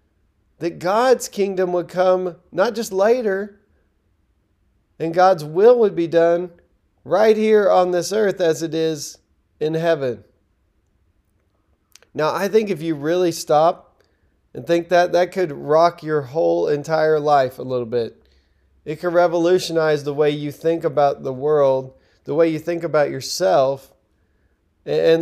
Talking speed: 145 wpm